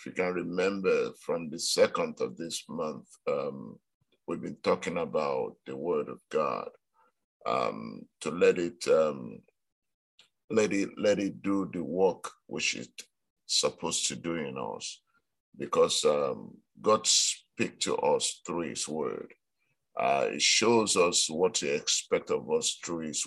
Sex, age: male, 50-69